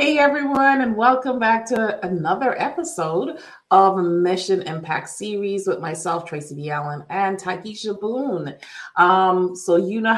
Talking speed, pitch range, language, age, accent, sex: 140 wpm, 160-210 Hz, English, 30-49, American, female